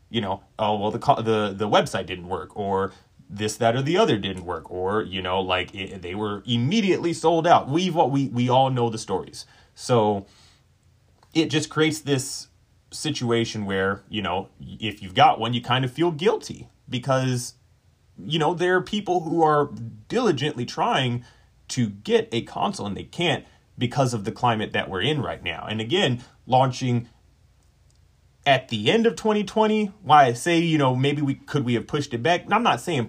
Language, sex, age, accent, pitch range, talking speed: English, male, 30-49, American, 105-145 Hz, 190 wpm